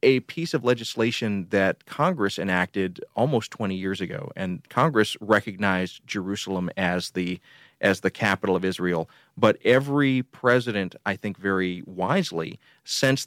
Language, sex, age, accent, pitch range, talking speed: English, male, 30-49, American, 95-110 Hz, 135 wpm